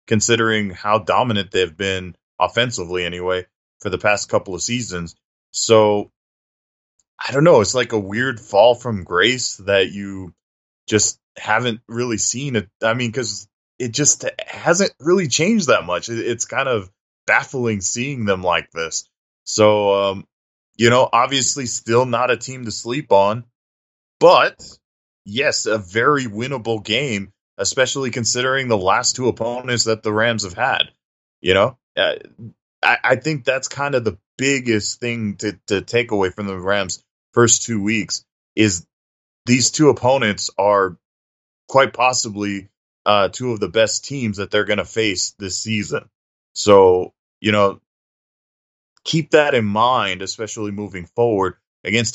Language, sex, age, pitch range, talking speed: English, male, 20-39, 95-120 Hz, 150 wpm